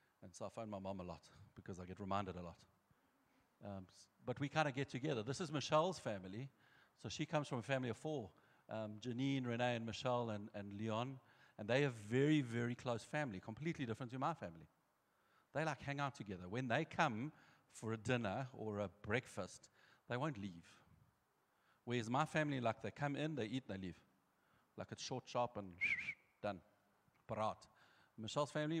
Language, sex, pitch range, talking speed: English, male, 105-135 Hz, 190 wpm